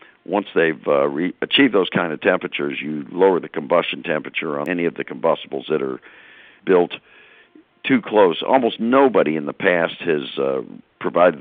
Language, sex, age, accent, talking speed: English, male, 60-79, American, 170 wpm